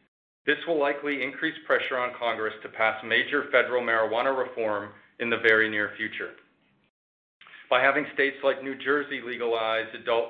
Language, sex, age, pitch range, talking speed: English, male, 40-59, 110-135 Hz, 150 wpm